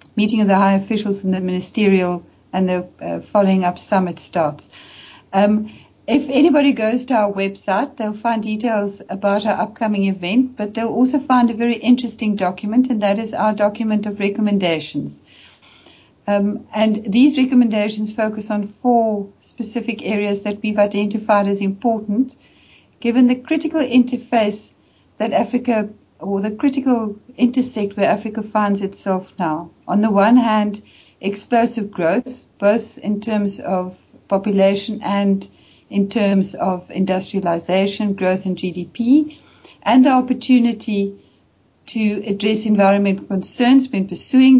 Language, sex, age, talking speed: English, female, 60-79, 135 wpm